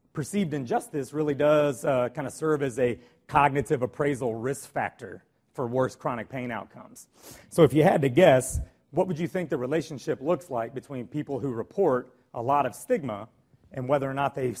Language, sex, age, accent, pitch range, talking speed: English, male, 30-49, American, 125-145 Hz, 185 wpm